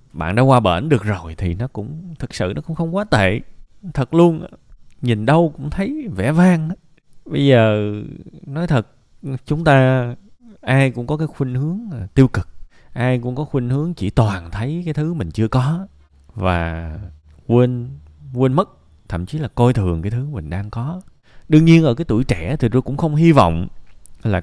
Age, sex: 20-39, male